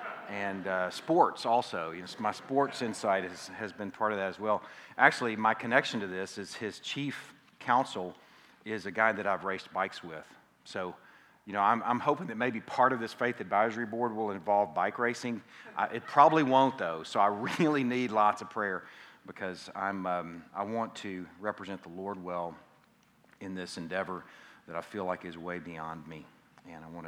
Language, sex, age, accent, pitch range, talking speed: English, male, 40-59, American, 85-105 Hz, 185 wpm